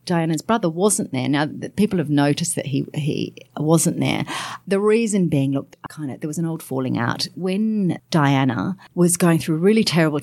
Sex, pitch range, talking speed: female, 140-175 Hz, 195 wpm